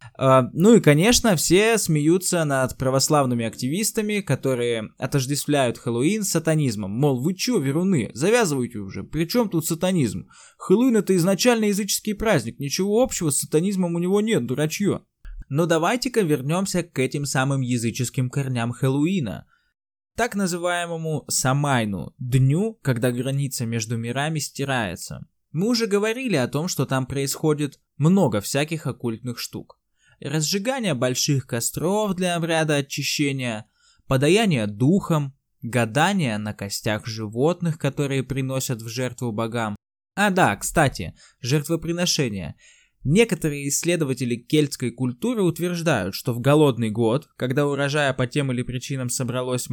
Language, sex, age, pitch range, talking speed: Russian, male, 20-39, 125-175 Hz, 125 wpm